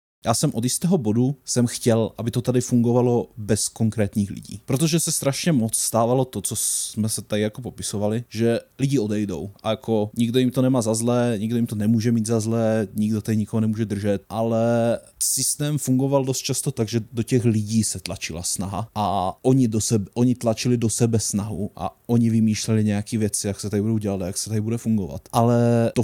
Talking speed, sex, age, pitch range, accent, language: 205 wpm, male, 20-39, 105-120 Hz, native, Czech